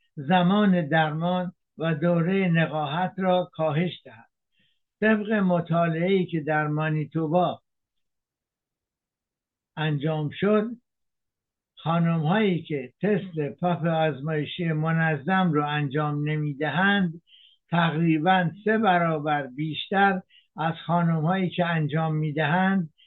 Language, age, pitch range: English, 60-79, 150-180 Hz